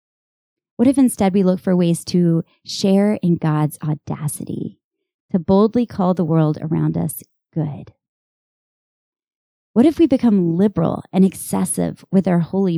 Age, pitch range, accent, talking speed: 20-39, 165-220 Hz, American, 140 wpm